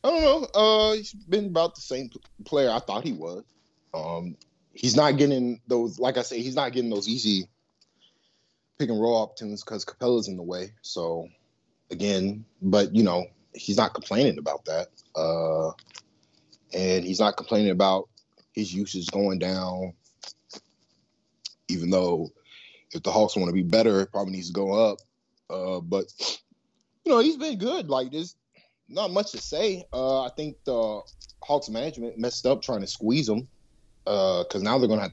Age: 20-39